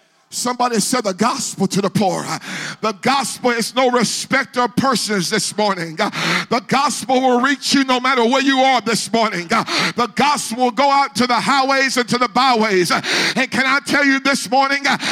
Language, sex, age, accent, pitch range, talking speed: English, male, 50-69, American, 245-310 Hz, 185 wpm